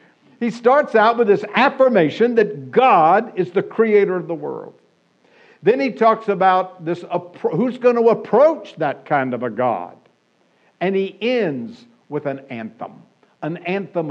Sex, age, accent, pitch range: male, 60-79, American, 170-225 Hz